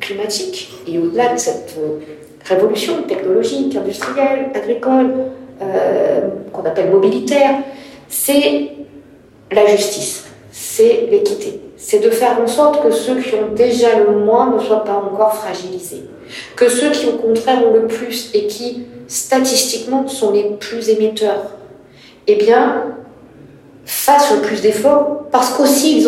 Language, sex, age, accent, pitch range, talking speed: French, female, 50-69, French, 205-295 Hz, 135 wpm